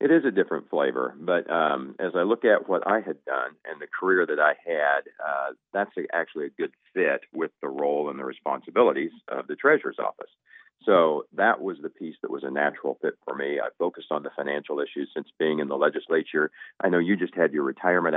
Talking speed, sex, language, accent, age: 220 wpm, male, English, American, 50-69